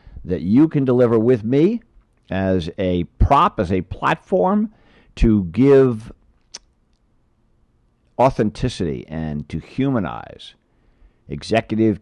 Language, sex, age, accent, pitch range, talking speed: English, male, 50-69, American, 75-110 Hz, 95 wpm